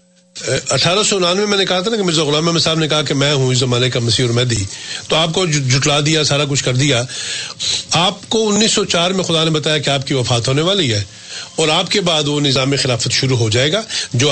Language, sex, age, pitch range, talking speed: Urdu, male, 40-59, 130-180 Hz, 255 wpm